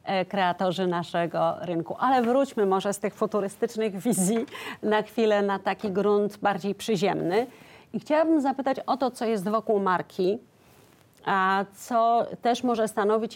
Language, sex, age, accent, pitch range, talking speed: Polish, female, 40-59, native, 200-245 Hz, 140 wpm